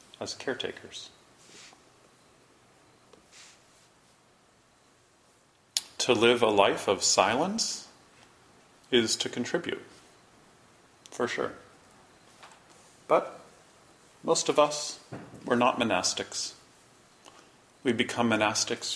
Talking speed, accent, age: 75 wpm, American, 40-59